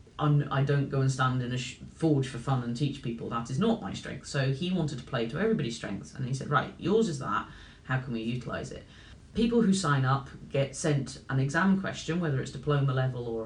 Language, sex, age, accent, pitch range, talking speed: English, female, 30-49, British, 130-160 Hz, 230 wpm